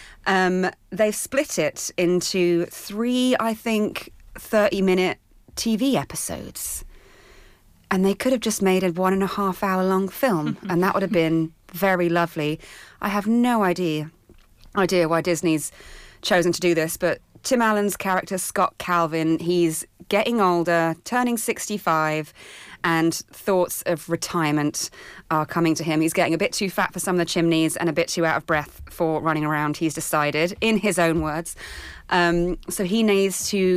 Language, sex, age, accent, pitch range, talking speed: English, female, 30-49, British, 165-205 Hz, 160 wpm